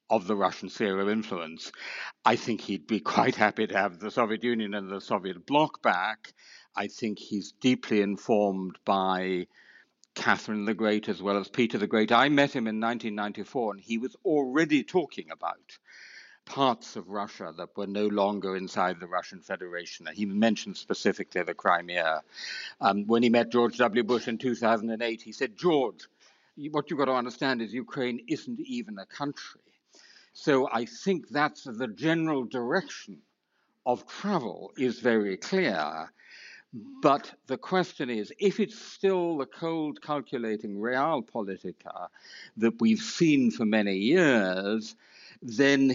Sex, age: male, 60-79